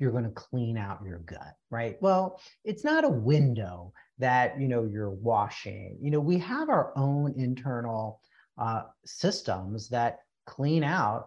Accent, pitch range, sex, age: American, 110-150 Hz, male, 40-59